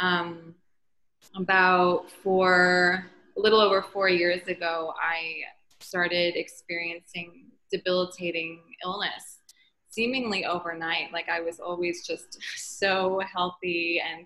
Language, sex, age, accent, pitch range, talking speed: English, female, 20-39, American, 170-185 Hz, 100 wpm